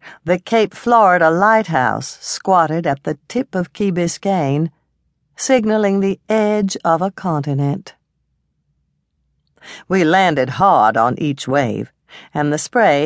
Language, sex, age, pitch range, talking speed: English, female, 60-79, 150-220 Hz, 120 wpm